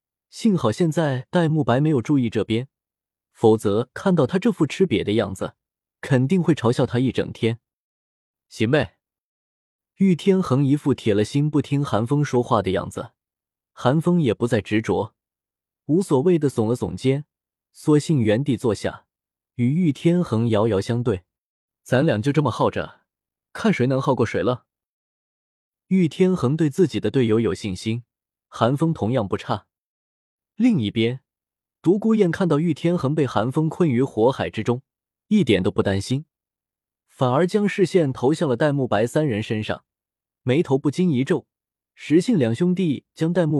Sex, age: male, 20-39